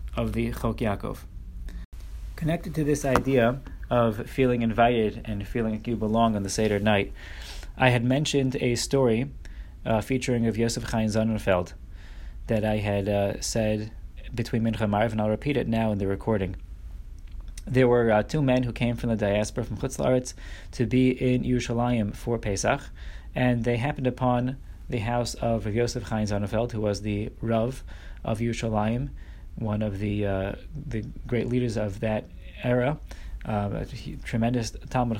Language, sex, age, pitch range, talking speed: English, male, 20-39, 105-125 Hz, 165 wpm